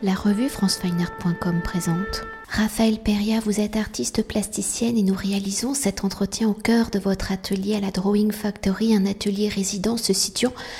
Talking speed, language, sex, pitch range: 160 wpm, French, female, 175-205 Hz